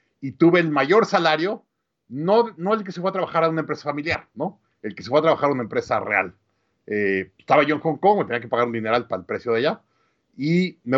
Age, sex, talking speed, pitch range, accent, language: 50-69, male, 255 wpm, 130-165 Hz, Mexican, English